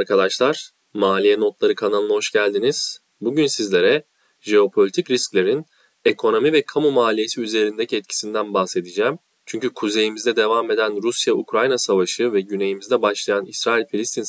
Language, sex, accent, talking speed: Turkish, male, native, 115 wpm